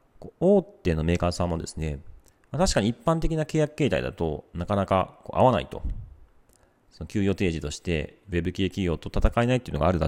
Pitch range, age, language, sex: 80-110 Hz, 40-59, Japanese, male